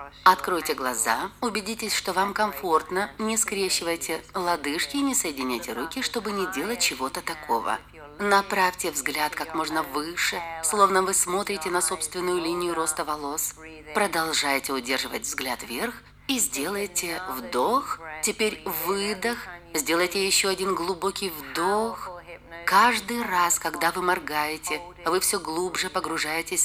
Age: 30-49